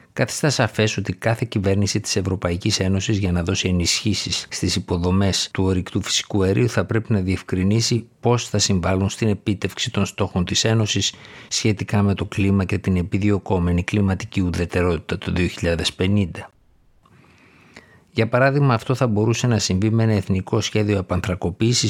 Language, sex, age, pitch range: Greek, male, 50-69, 90-110 Hz